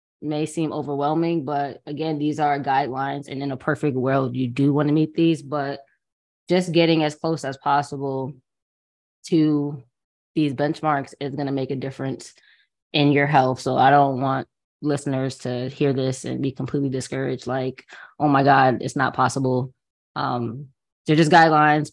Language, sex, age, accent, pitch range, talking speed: English, female, 20-39, American, 130-150 Hz, 165 wpm